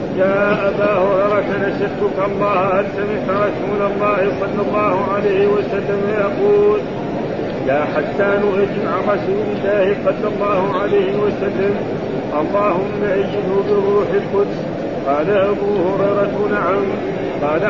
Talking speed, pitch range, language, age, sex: 110 wpm, 195-205 Hz, Arabic, 40-59, male